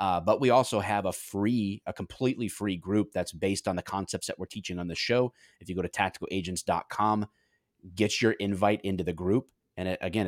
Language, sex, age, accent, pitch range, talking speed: English, male, 30-49, American, 90-105 Hz, 210 wpm